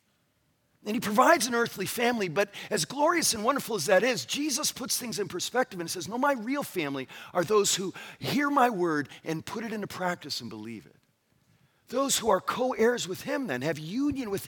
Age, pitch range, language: 40-59, 160-245 Hz, English